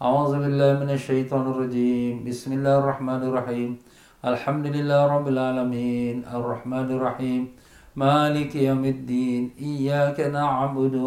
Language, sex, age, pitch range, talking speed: Malay, male, 50-69, 125-140 Hz, 70 wpm